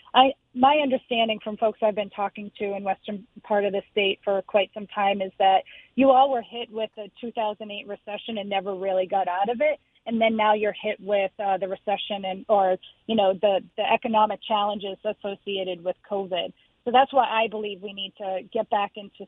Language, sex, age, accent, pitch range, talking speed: English, female, 30-49, American, 190-220 Hz, 205 wpm